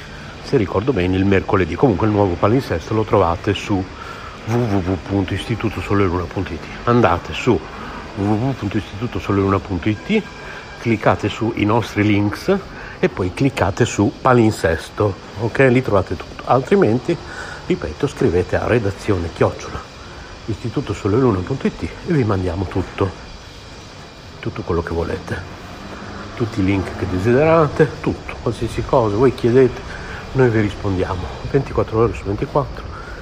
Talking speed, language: 110 wpm, Italian